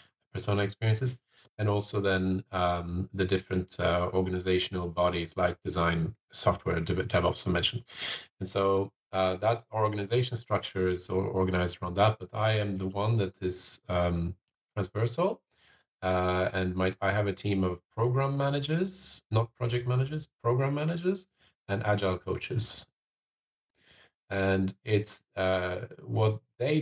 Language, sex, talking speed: English, male, 130 wpm